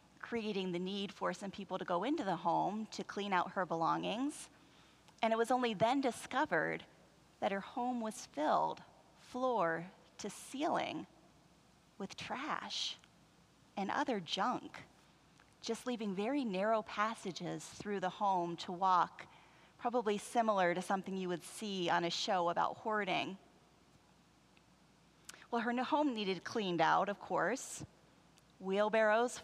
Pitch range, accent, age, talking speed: 180-235 Hz, American, 30-49, 135 wpm